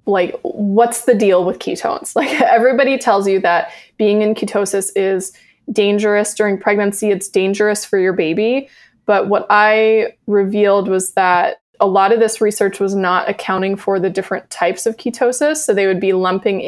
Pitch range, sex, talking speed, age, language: 190-235 Hz, female, 175 wpm, 20-39, English